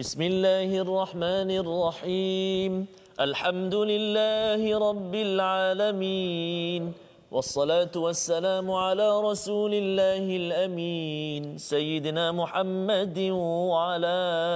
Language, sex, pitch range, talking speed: Malayalam, male, 170-210 Hz, 70 wpm